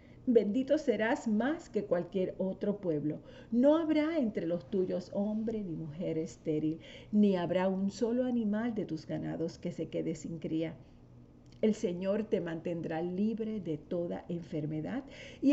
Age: 50-69